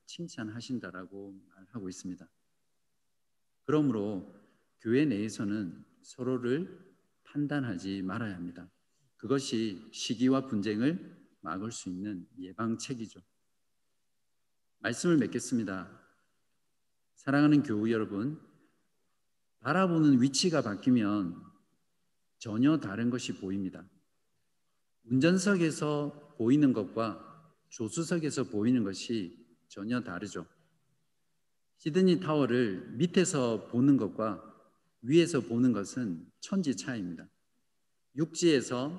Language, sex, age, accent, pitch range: Korean, male, 50-69, native, 110-145 Hz